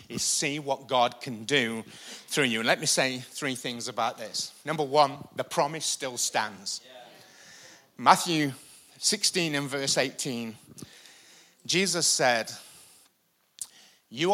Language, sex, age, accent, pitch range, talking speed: English, male, 30-49, British, 125-170 Hz, 125 wpm